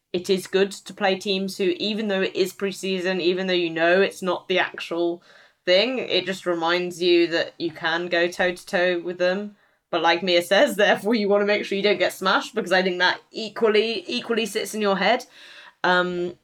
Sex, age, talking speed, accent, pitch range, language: female, 10-29, 210 wpm, British, 170-195 Hz, English